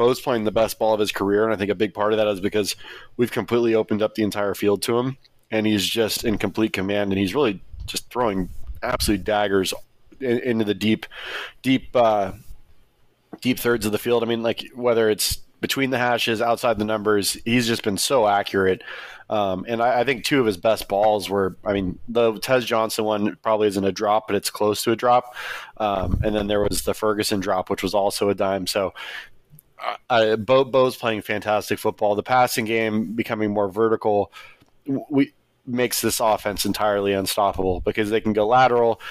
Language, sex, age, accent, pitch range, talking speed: English, male, 20-39, American, 105-115 Hz, 200 wpm